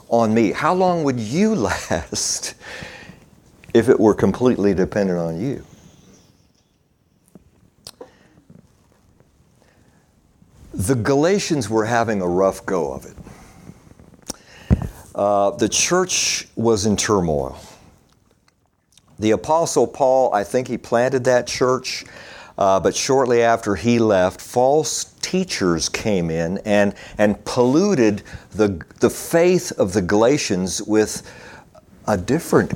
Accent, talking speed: American, 110 wpm